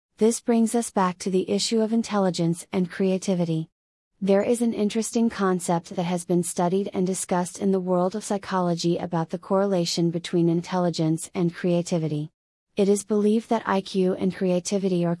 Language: English